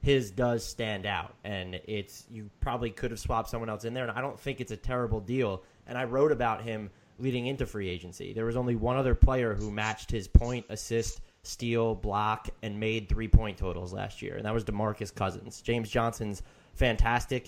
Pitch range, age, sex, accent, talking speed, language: 100-115 Hz, 20-39, male, American, 205 wpm, English